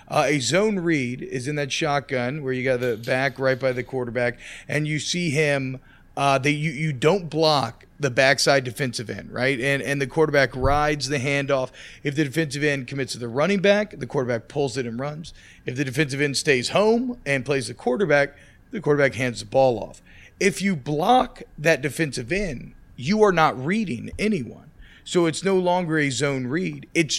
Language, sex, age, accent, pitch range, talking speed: English, male, 40-59, American, 130-165 Hz, 195 wpm